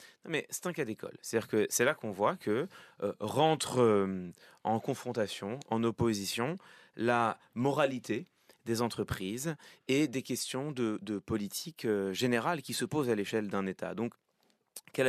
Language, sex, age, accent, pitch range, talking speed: French, male, 30-49, French, 115-150 Hz, 165 wpm